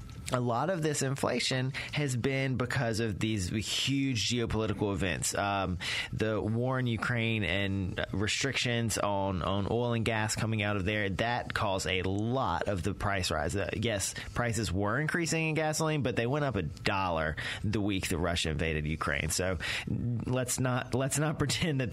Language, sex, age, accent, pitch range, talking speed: English, male, 30-49, American, 100-125 Hz, 170 wpm